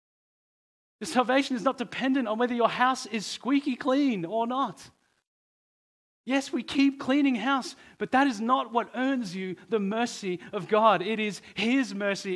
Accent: Australian